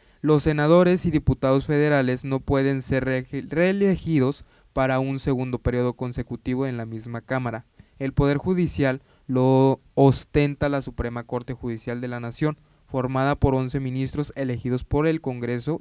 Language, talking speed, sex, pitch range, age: Spanish, 150 wpm, male, 125-145 Hz, 20-39